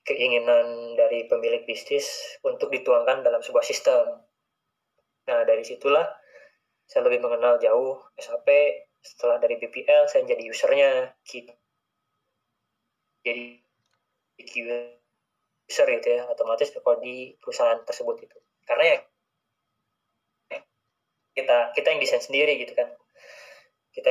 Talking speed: 105 wpm